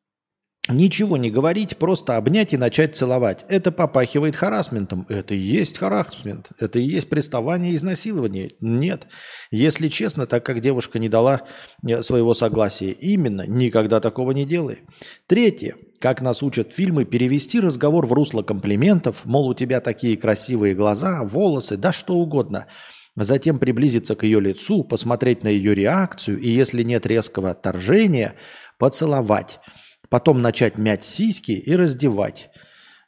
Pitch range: 110-155 Hz